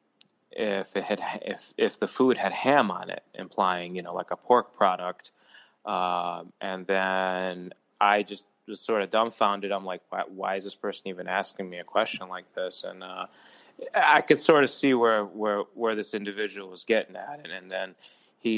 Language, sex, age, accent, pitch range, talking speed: English, male, 20-39, American, 95-115 Hz, 195 wpm